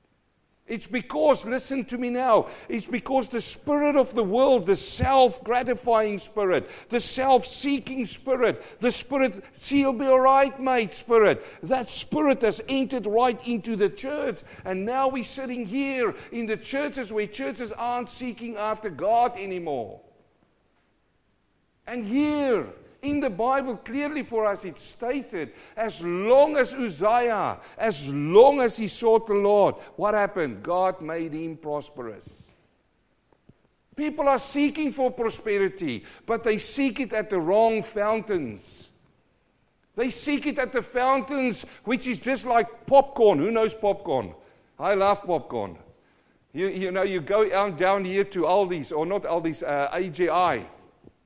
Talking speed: 140 wpm